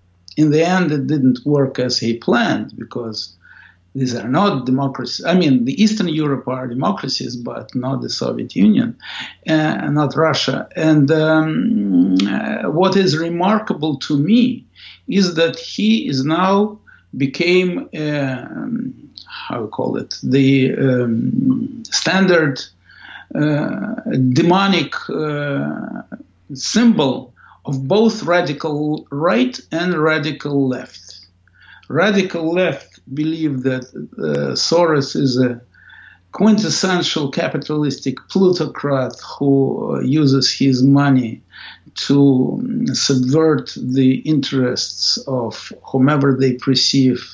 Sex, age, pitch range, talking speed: male, 60-79, 130-170 Hz, 110 wpm